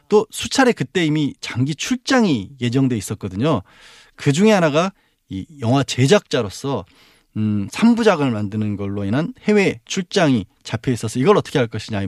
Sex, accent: male, native